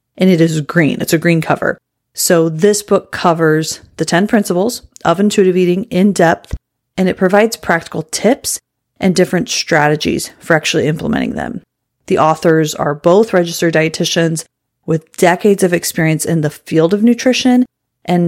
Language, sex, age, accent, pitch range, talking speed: English, female, 30-49, American, 160-195 Hz, 160 wpm